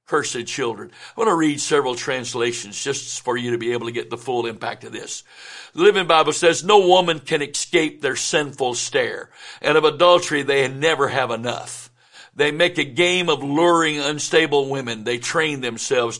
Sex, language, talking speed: male, English, 185 wpm